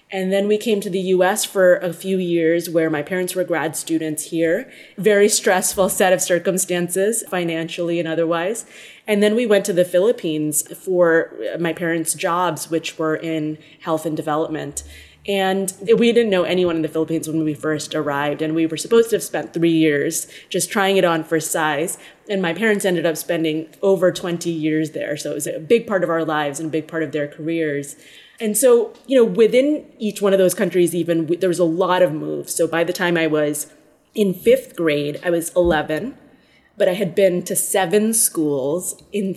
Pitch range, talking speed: 165-195 Hz, 205 wpm